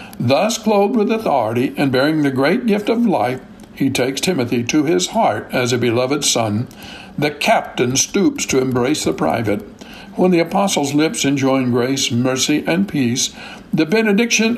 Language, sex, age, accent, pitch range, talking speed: English, male, 60-79, American, 125-195 Hz, 160 wpm